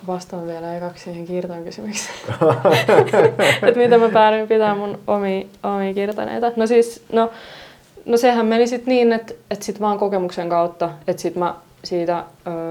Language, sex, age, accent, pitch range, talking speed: Finnish, female, 20-39, native, 165-210 Hz, 150 wpm